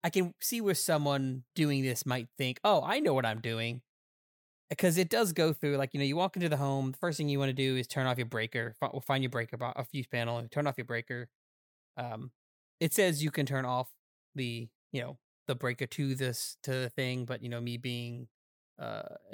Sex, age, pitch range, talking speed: male, 20-39, 125-150 Hz, 230 wpm